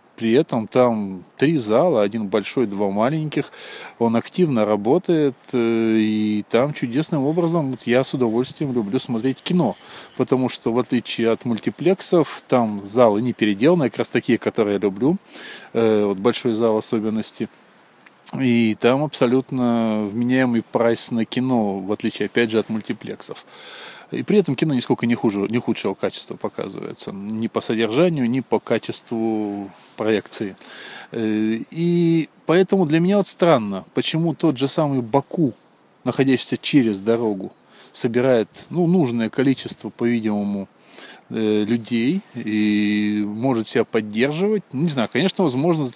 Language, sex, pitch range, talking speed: Russian, male, 110-145 Hz, 135 wpm